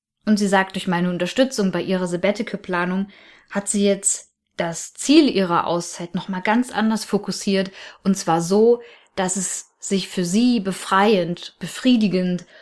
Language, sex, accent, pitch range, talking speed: German, female, German, 180-210 Hz, 145 wpm